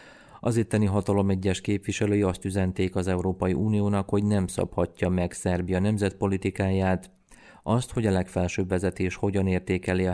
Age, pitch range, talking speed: 30-49, 90-100 Hz, 140 wpm